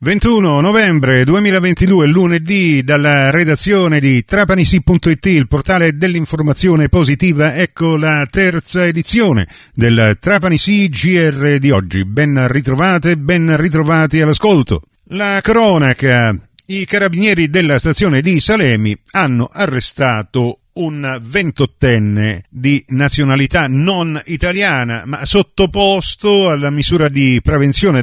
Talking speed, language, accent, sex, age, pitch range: 105 wpm, Italian, native, male, 40-59, 125-175 Hz